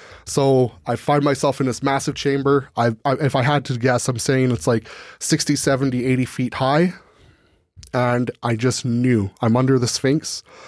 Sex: male